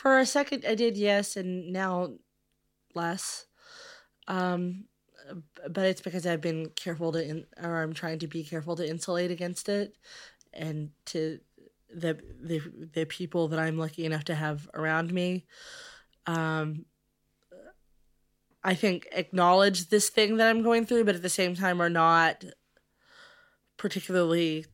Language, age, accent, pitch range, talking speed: English, 20-39, American, 155-190 Hz, 145 wpm